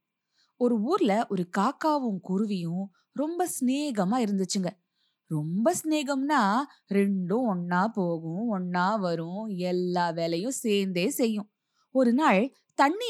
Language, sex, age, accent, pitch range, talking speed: Tamil, female, 20-39, native, 190-260 Hz, 100 wpm